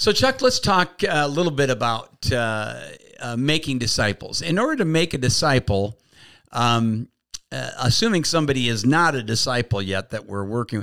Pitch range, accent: 115-155 Hz, American